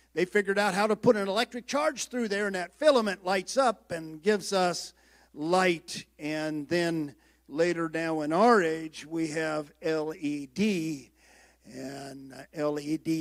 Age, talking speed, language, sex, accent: 50-69, 145 wpm, English, male, American